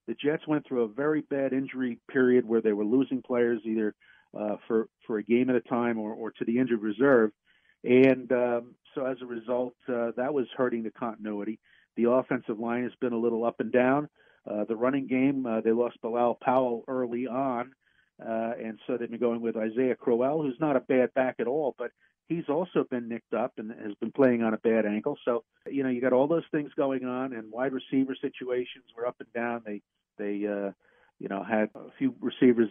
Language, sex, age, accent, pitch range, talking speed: English, male, 50-69, American, 115-130 Hz, 220 wpm